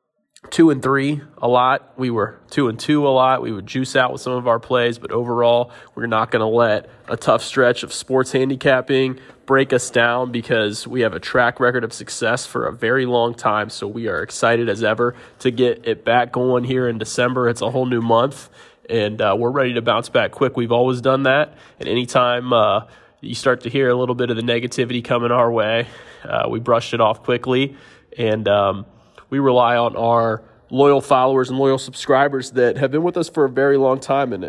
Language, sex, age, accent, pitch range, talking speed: English, male, 20-39, American, 115-130 Hz, 215 wpm